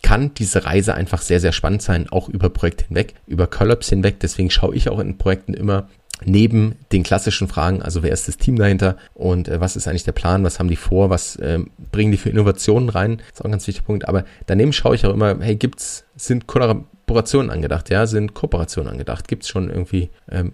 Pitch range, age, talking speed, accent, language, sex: 90-110 Hz, 30-49, 220 wpm, German, German, male